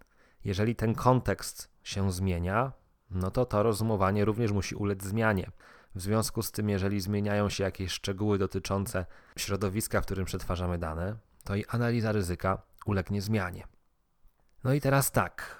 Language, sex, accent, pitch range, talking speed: Polish, male, native, 95-120 Hz, 145 wpm